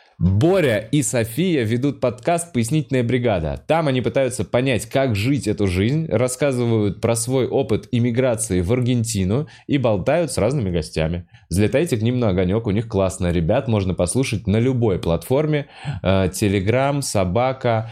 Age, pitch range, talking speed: 20-39, 90-125 Hz, 145 wpm